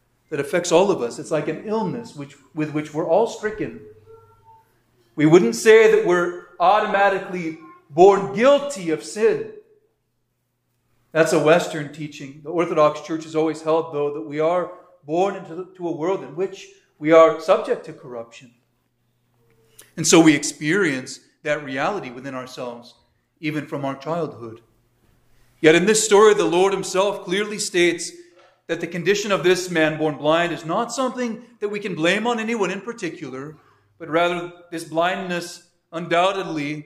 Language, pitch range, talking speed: English, 135-175 Hz, 160 wpm